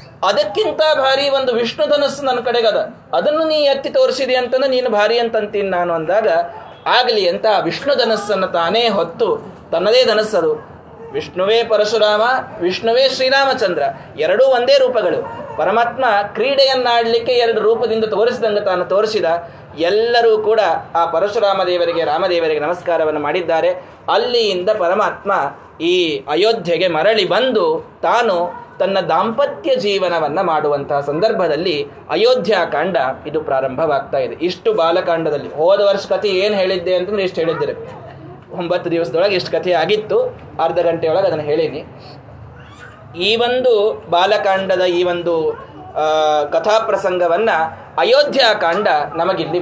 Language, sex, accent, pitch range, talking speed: Kannada, male, native, 175-240 Hz, 100 wpm